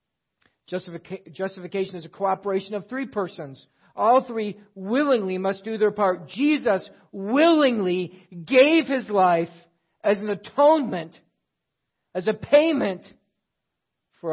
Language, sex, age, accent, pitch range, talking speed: English, male, 50-69, American, 185-255 Hz, 115 wpm